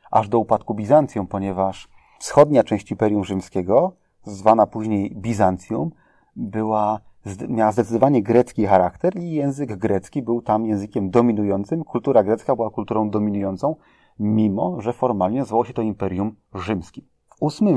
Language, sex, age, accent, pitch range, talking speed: Polish, male, 30-49, native, 100-120 Hz, 130 wpm